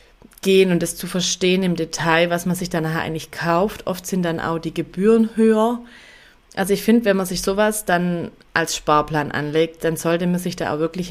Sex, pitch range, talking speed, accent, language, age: female, 160-190 Hz, 205 wpm, German, German, 20-39